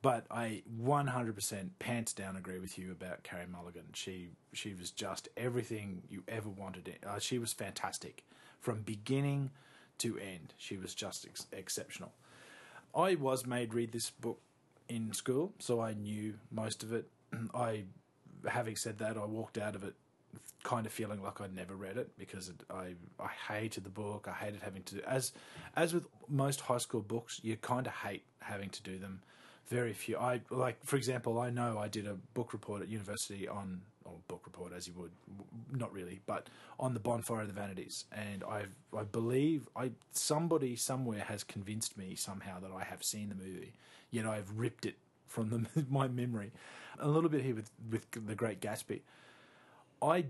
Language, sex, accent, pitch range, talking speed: English, male, Australian, 100-125 Hz, 185 wpm